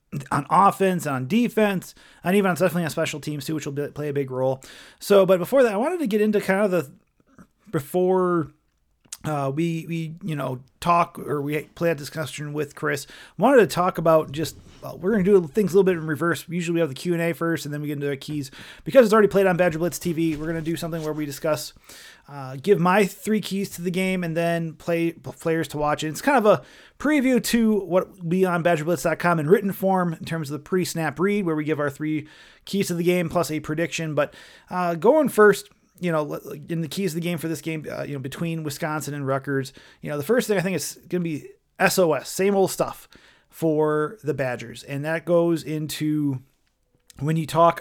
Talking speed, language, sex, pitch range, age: 230 wpm, English, male, 150-180 Hz, 30-49